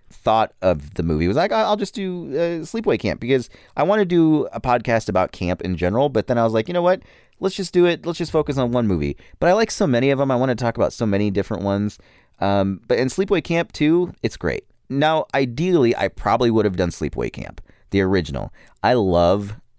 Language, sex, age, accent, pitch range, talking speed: English, male, 30-49, American, 85-125 Hz, 245 wpm